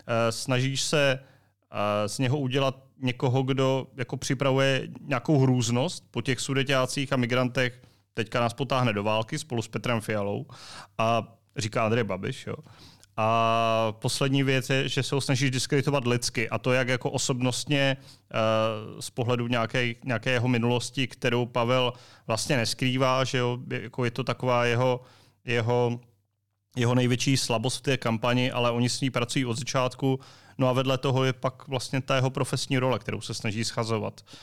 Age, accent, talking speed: 30-49, native, 155 wpm